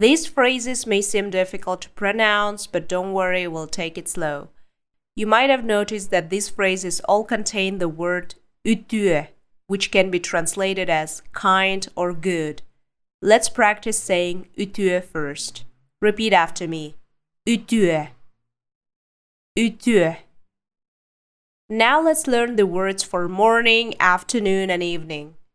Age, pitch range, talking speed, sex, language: 20-39, 165-205 Hz, 125 wpm, female, English